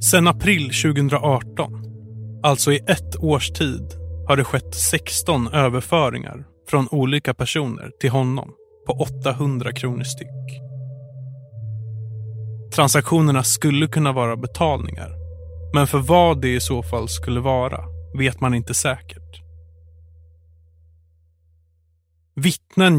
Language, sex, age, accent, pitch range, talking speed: Swedish, male, 30-49, native, 110-145 Hz, 105 wpm